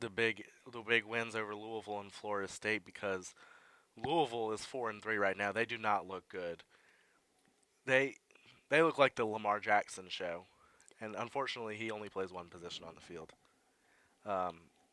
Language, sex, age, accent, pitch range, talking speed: English, male, 20-39, American, 100-125 Hz, 170 wpm